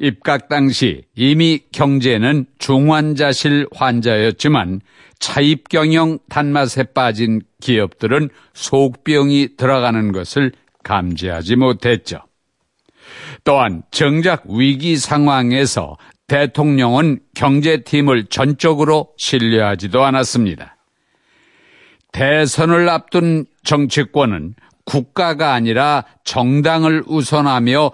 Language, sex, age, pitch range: Korean, male, 50-69, 120-150 Hz